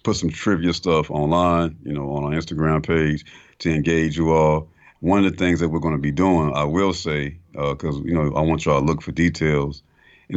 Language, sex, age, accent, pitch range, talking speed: English, male, 50-69, American, 75-85 Hz, 230 wpm